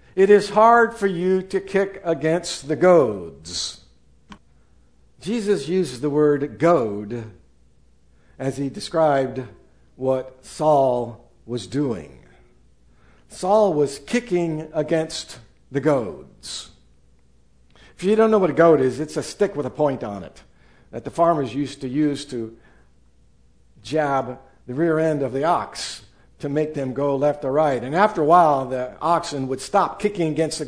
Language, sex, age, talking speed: English, male, 60-79, 150 wpm